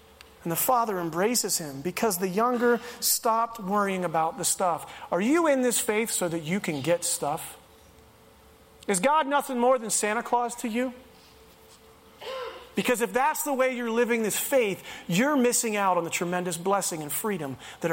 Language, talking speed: English, 175 wpm